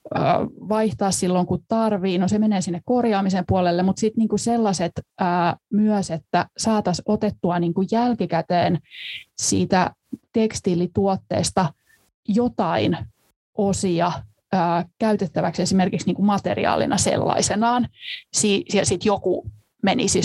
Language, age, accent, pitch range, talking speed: Finnish, 20-39, native, 185-215 Hz, 90 wpm